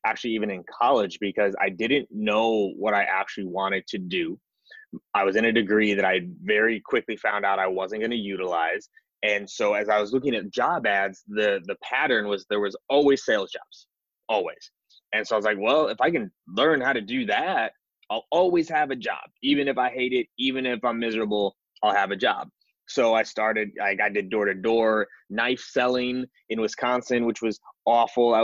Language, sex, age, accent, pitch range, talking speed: English, male, 20-39, American, 100-120 Hz, 205 wpm